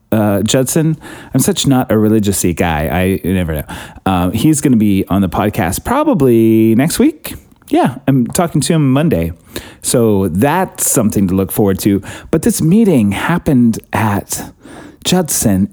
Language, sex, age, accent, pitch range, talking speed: English, male, 30-49, American, 95-145 Hz, 165 wpm